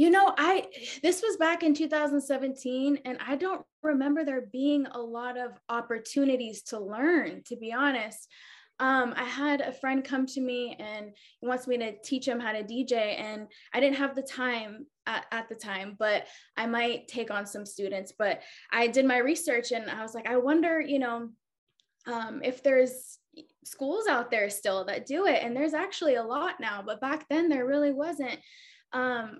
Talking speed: 190 wpm